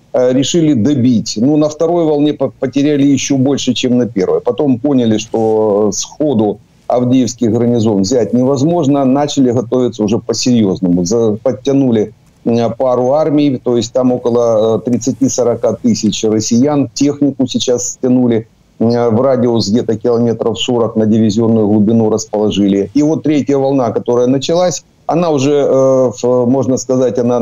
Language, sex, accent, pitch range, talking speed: Ukrainian, male, native, 115-135 Hz, 125 wpm